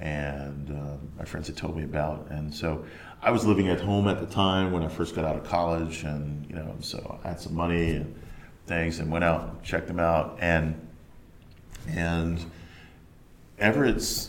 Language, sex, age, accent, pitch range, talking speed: English, male, 40-59, American, 75-90 Hz, 190 wpm